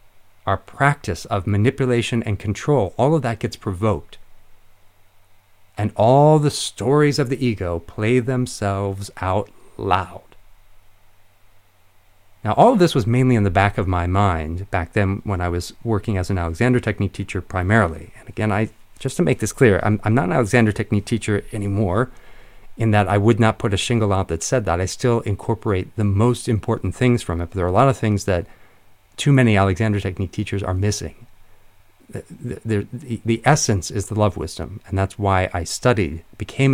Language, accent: English, American